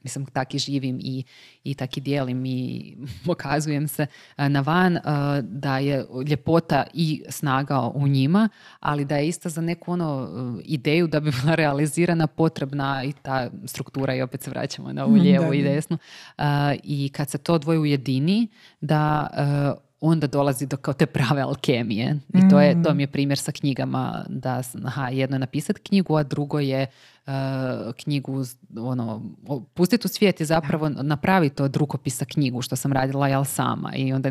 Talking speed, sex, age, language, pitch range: 170 wpm, female, 20-39, Croatian, 135-155 Hz